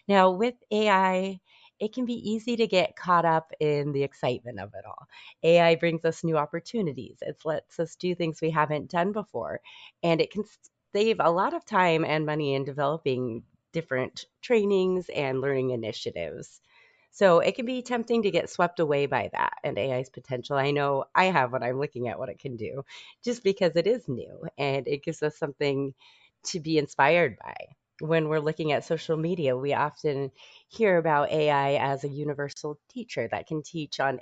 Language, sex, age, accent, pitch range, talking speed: English, female, 30-49, American, 140-175 Hz, 190 wpm